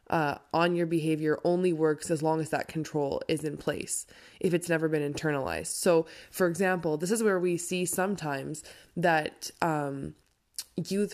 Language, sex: English, female